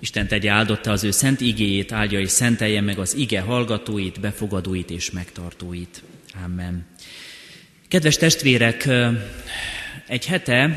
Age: 30-49